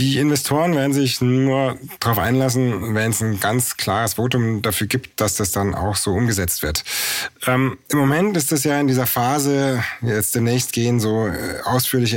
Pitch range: 110-135 Hz